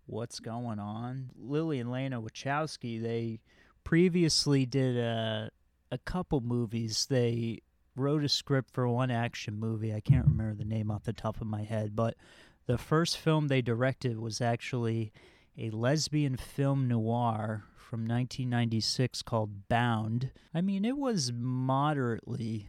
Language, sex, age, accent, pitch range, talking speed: English, male, 30-49, American, 110-130 Hz, 145 wpm